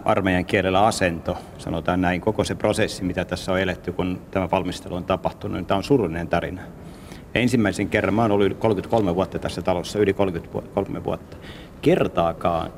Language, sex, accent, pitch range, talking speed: Finnish, male, native, 90-105 Hz, 165 wpm